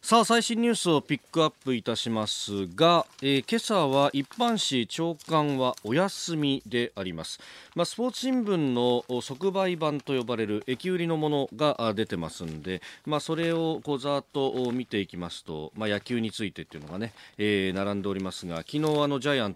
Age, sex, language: 40-59, male, Japanese